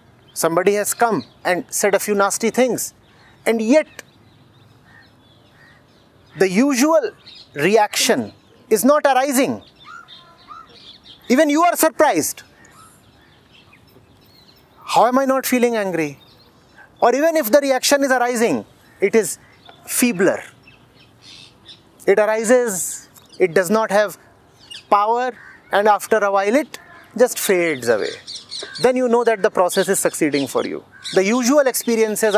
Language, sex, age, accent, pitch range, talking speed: English, male, 30-49, Indian, 195-270 Hz, 120 wpm